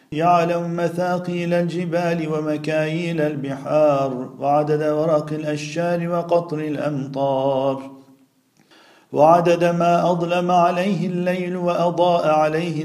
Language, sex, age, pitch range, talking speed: Turkish, male, 50-69, 135-170 Hz, 80 wpm